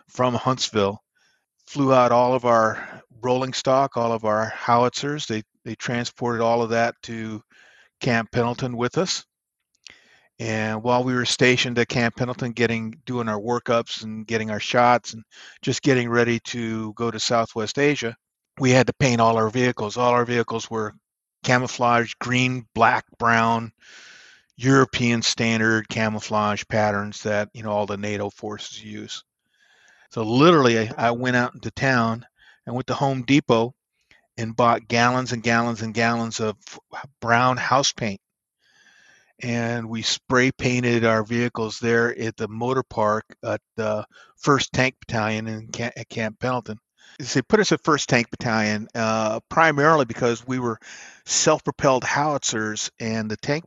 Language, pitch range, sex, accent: English, 110-125 Hz, male, American